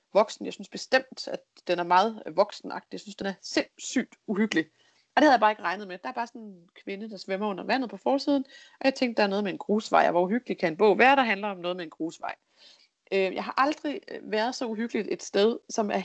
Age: 30-49